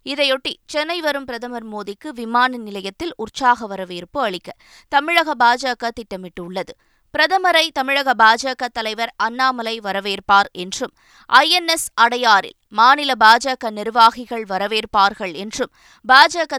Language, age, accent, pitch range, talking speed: Tamil, 20-39, native, 220-280 Hz, 110 wpm